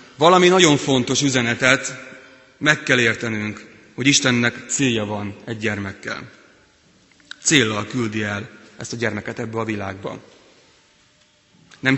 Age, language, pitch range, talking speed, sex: 30-49, Hungarian, 110-130 Hz, 115 wpm, male